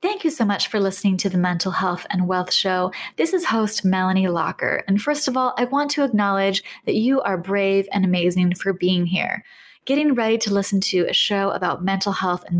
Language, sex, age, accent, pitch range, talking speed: English, female, 20-39, American, 185-245 Hz, 220 wpm